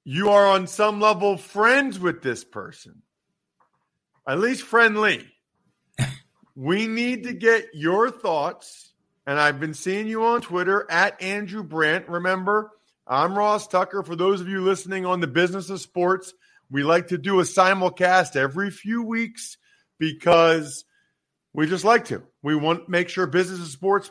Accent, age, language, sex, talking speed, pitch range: American, 40-59, English, male, 160 wpm, 160-205 Hz